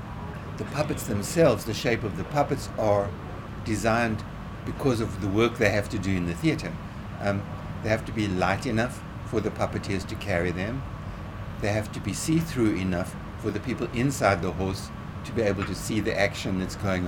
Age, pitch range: 60-79, 95-110 Hz